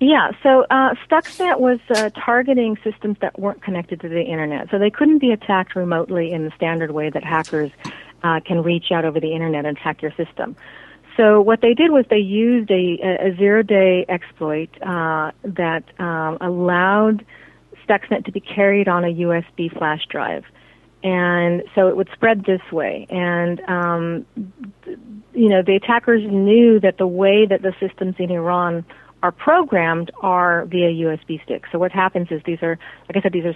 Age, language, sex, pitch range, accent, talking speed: 40-59, English, female, 165-200 Hz, American, 180 wpm